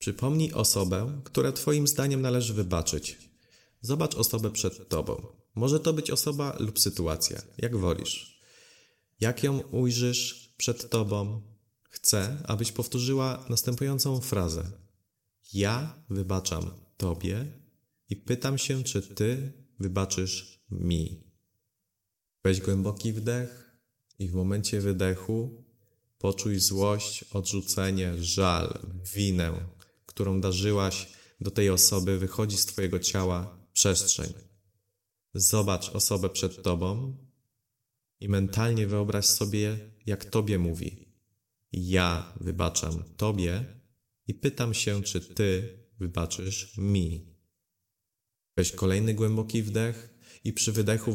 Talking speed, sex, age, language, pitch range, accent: 105 wpm, male, 30-49, Polish, 95-115 Hz, native